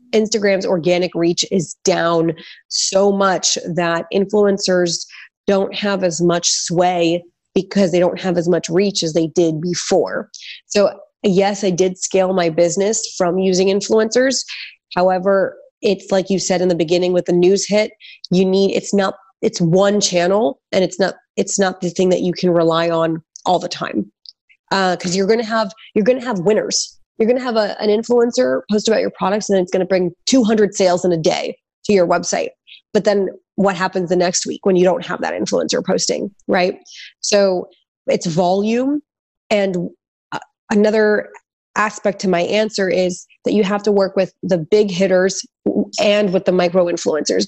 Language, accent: English, American